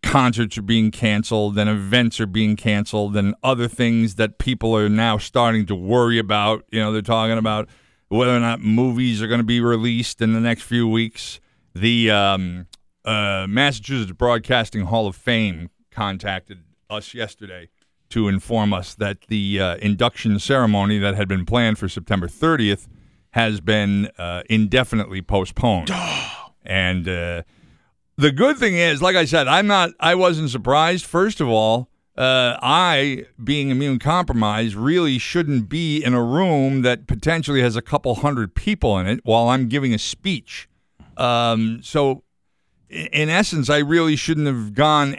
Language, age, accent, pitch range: English, 50-69, American, 105-130 Hz